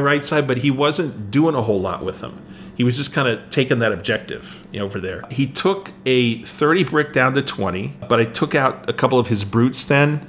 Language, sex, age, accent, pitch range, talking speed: English, male, 40-59, American, 110-140 Hz, 225 wpm